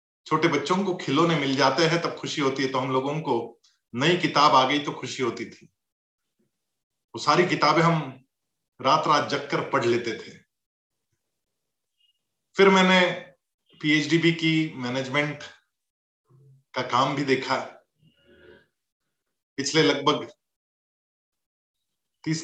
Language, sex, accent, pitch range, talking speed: Hindi, male, native, 135-180 Hz, 125 wpm